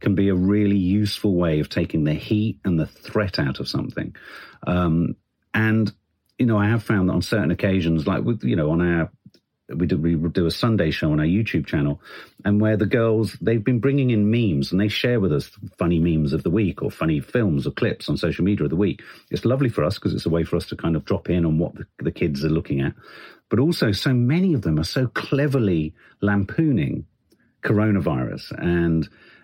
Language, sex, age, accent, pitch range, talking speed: English, male, 50-69, British, 90-120 Hz, 220 wpm